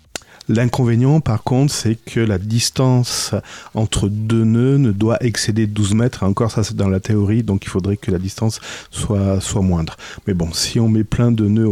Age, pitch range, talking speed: 40-59, 100-130 Hz, 195 wpm